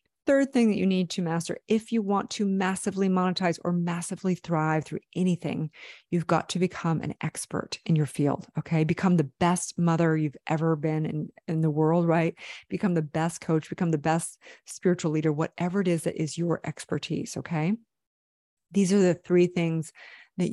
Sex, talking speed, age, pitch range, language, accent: female, 185 wpm, 30-49, 155-180 Hz, English, American